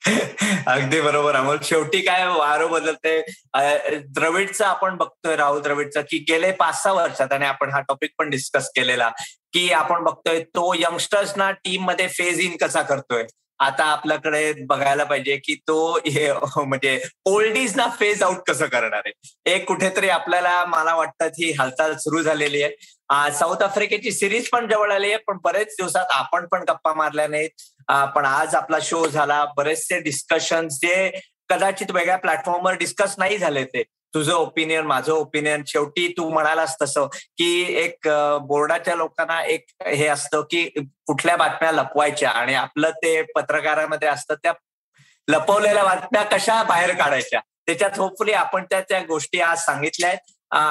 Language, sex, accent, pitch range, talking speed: Marathi, male, native, 145-185 Hz, 155 wpm